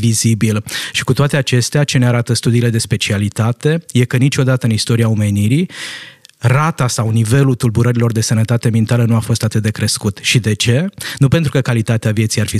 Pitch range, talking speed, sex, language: 115-140 Hz, 185 wpm, male, Romanian